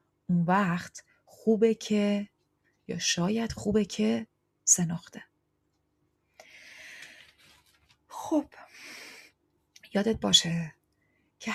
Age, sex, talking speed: 30-49, female, 60 wpm